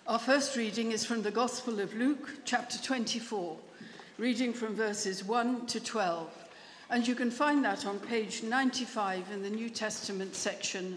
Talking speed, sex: 165 wpm, female